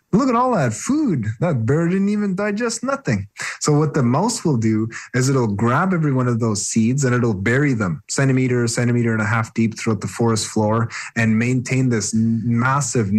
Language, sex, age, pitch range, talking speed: English, male, 30-49, 110-130 Hz, 195 wpm